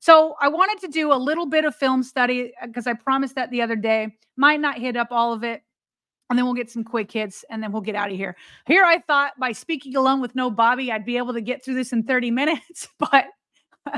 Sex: female